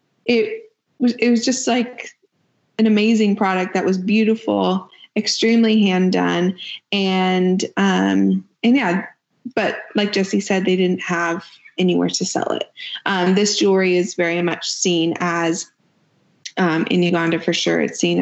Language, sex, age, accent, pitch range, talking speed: English, female, 20-39, American, 175-220 Hz, 150 wpm